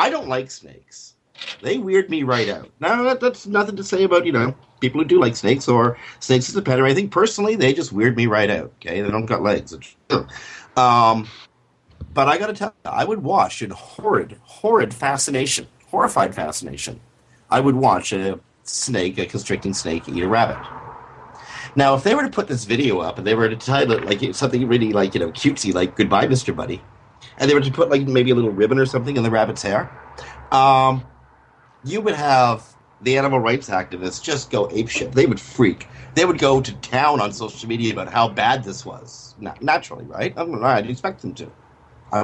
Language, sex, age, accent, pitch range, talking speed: English, male, 50-69, American, 115-140 Hz, 215 wpm